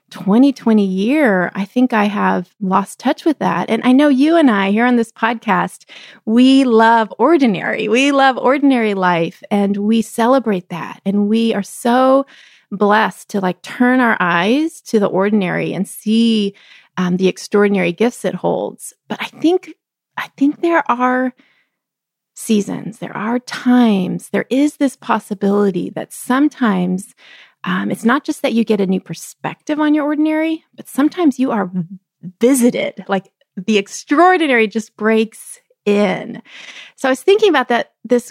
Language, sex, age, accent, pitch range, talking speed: English, female, 30-49, American, 205-275 Hz, 155 wpm